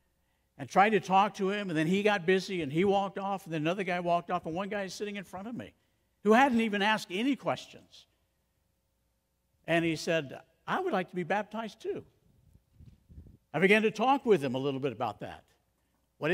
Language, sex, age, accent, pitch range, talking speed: English, male, 60-79, American, 170-225 Hz, 215 wpm